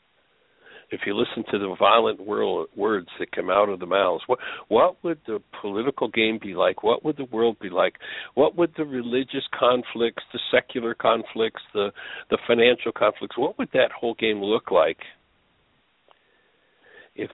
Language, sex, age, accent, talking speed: English, male, 60-79, American, 165 wpm